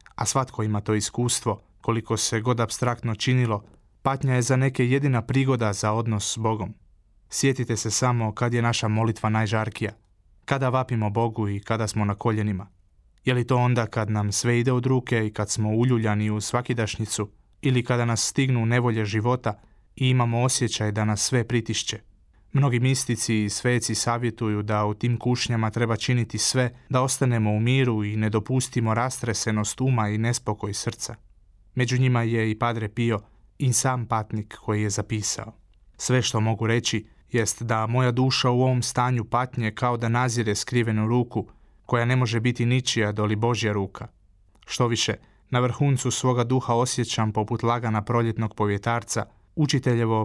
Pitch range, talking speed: 105-125 Hz, 165 wpm